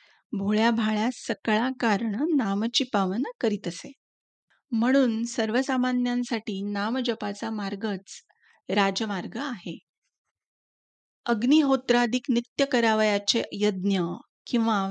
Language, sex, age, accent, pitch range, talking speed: Marathi, female, 30-49, native, 205-245 Hz, 75 wpm